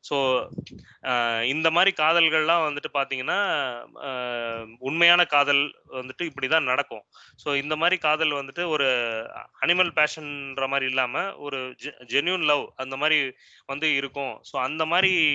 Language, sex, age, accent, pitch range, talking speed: Tamil, male, 20-39, native, 130-160 Hz, 120 wpm